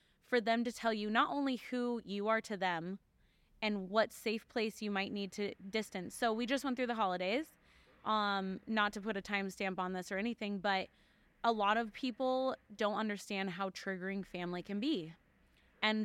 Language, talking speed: English, 190 wpm